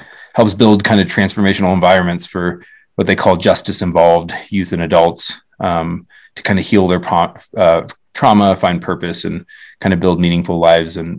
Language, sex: English, male